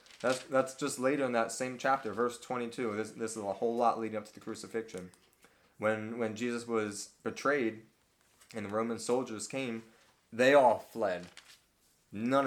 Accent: American